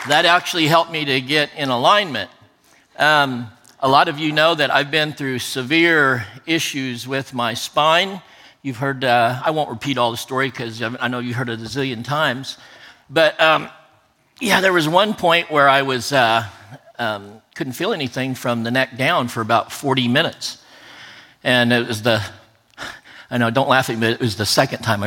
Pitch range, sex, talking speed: 115-140 Hz, male, 190 wpm